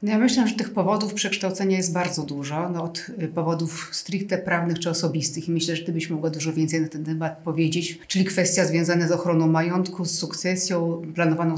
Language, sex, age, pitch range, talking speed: Polish, female, 40-59, 165-195 Hz, 170 wpm